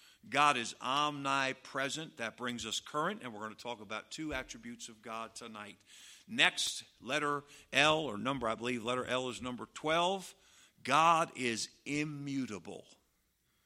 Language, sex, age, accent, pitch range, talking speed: English, male, 50-69, American, 105-145 Hz, 145 wpm